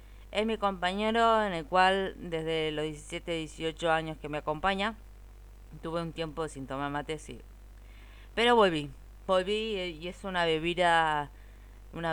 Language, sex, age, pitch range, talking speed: Spanish, female, 20-39, 135-185 Hz, 145 wpm